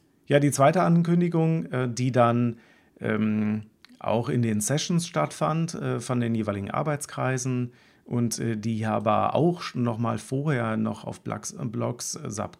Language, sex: German, male